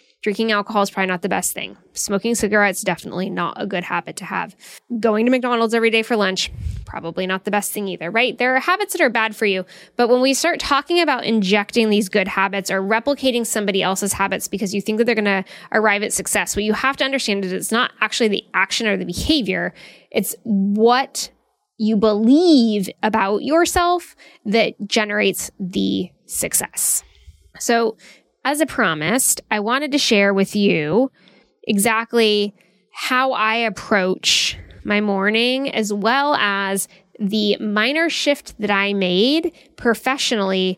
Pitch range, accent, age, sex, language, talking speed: 195-245 Hz, American, 10-29, female, English, 170 wpm